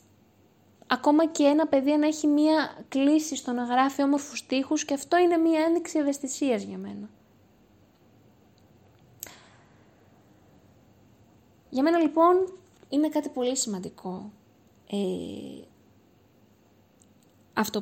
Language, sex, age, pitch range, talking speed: Greek, female, 20-39, 185-285 Hz, 100 wpm